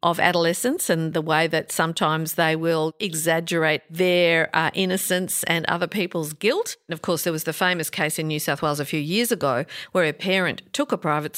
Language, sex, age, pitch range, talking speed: English, female, 50-69, 155-190 Hz, 205 wpm